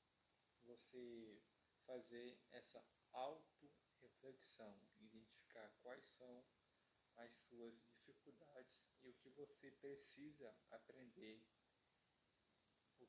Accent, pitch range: Brazilian, 115-130 Hz